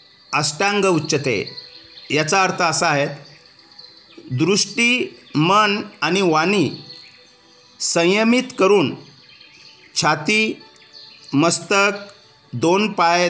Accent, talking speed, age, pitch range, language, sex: native, 60 wpm, 50-69, 155-200 Hz, Hindi, male